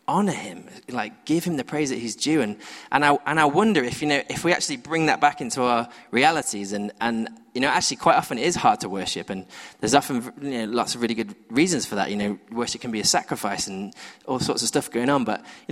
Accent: British